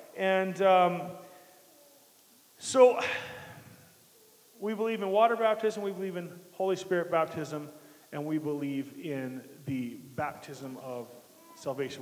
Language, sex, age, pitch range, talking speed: English, male, 40-59, 160-215 Hz, 110 wpm